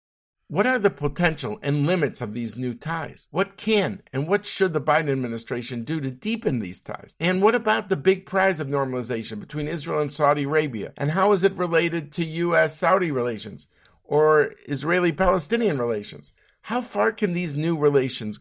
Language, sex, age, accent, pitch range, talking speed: English, male, 50-69, American, 140-175 Hz, 175 wpm